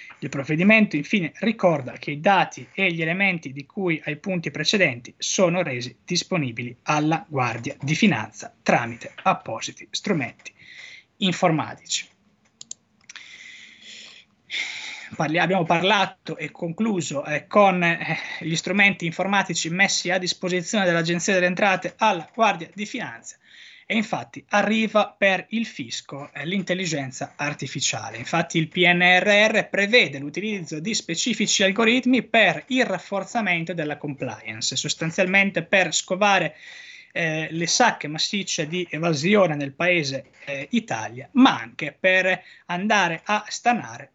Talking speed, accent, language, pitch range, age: 115 wpm, native, Italian, 150-200 Hz, 20-39